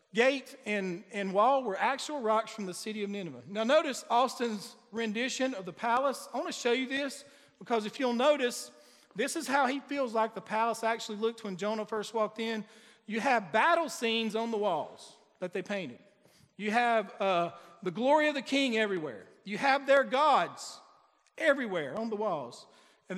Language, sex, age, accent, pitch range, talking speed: English, male, 50-69, American, 200-270 Hz, 185 wpm